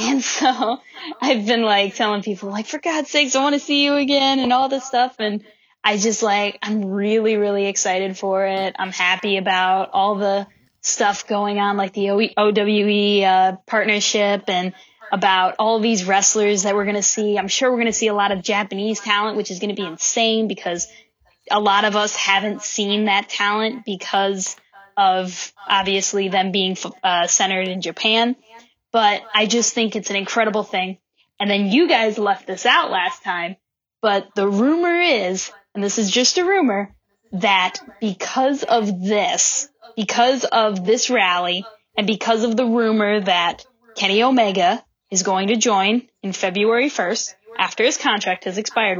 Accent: American